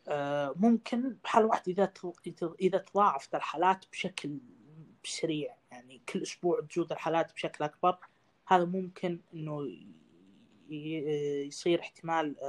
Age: 20-39